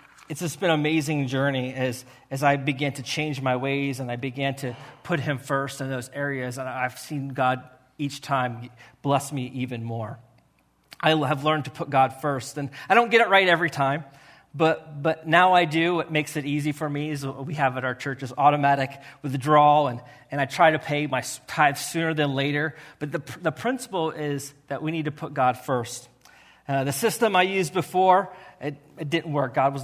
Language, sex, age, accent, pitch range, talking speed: English, male, 30-49, American, 130-160 Hz, 210 wpm